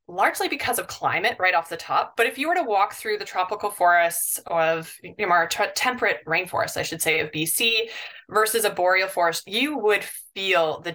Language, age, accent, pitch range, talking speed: English, 20-39, American, 175-230 Hz, 195 wpm